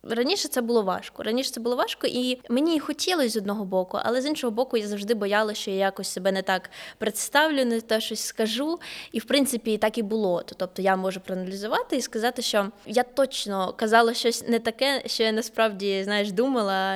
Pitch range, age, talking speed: 190-235 Hz, 20-39, 205 wpm